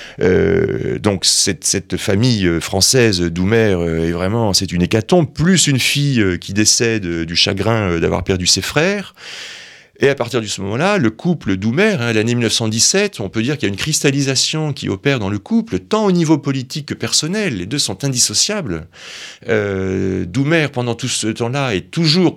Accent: French